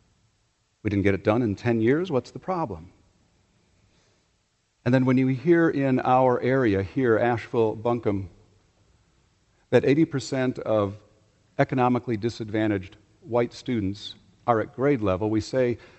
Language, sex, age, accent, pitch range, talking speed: English, male, 50-69, American, 100-125 Hz, 130 wpm